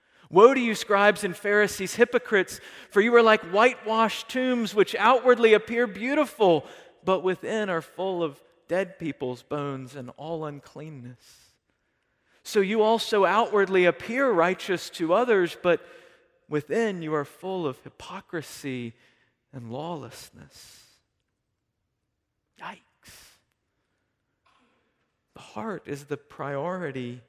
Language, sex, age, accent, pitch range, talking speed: English, male, 40-59, American, 135-195 Hz, 110 wpm